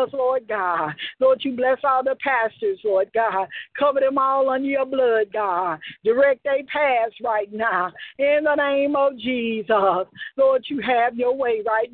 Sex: female